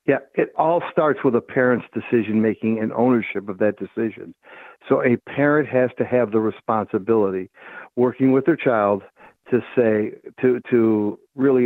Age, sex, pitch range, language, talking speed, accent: 60-79, male, 110-135 Hz, English, 155 wpm, American